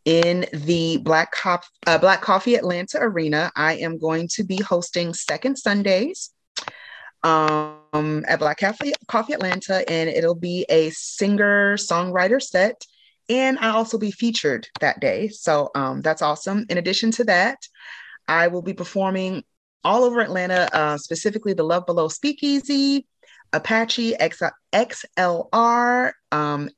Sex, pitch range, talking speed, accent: female, 155-215 Hz, 130 wpm, American